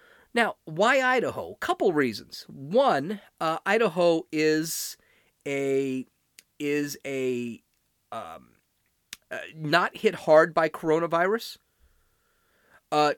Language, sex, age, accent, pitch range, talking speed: English, male, 40-59, American, 135-195 Hz, 90 wpm